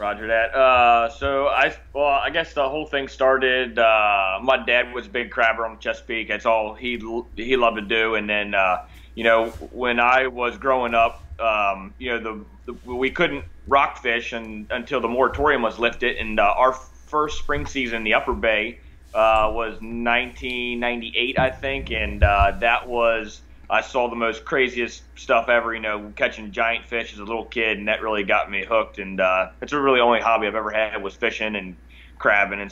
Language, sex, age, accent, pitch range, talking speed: English, male, 30-49, American, 100-120 Hz, 200 wpm